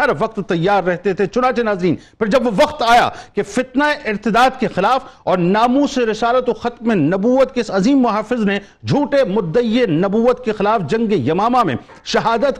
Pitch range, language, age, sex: 205-250 Hz, Urdu, 50-69, male